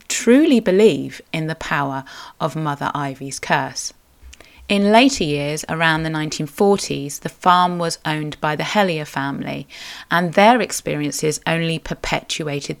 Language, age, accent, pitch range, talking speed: English, 30-49, British, 150-180 Hz, 130 wpm